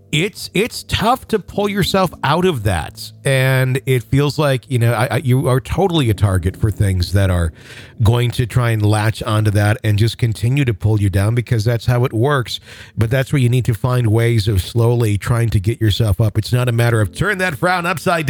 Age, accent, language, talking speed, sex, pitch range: 50-69, American, English, 225 wpm, male, 110-140 Hz